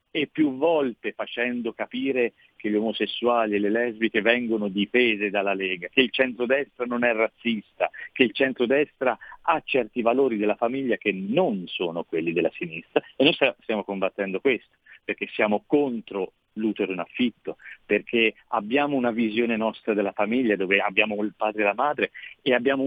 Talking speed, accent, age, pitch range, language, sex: 165 wpm, native, 50-69, 105-125 Hz, Italian, male